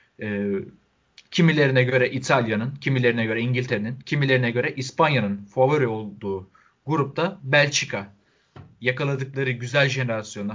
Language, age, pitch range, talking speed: Turkish, 30-49, 105-130 Hz, 90 wpm